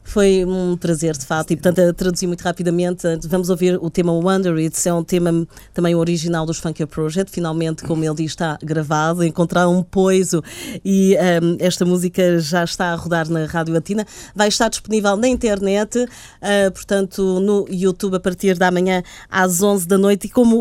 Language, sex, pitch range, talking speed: Portuguese, female, 165-205 Hz, 185 wpm